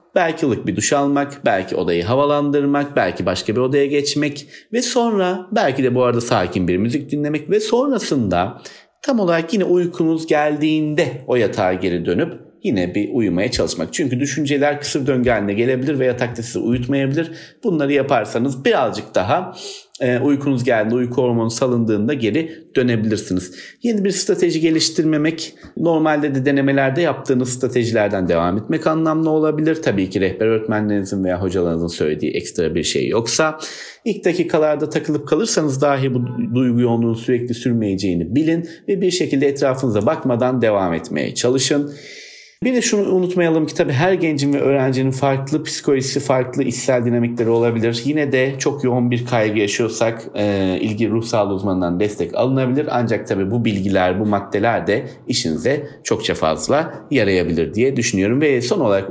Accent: native